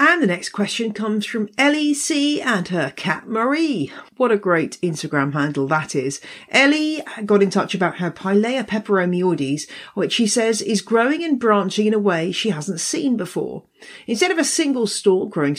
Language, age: English, 40-59